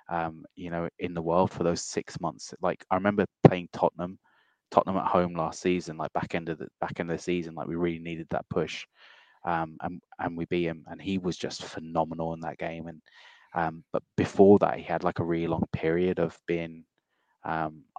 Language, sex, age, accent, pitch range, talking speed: English, male, 20-39, British, 85-90 Hz, 215 wpm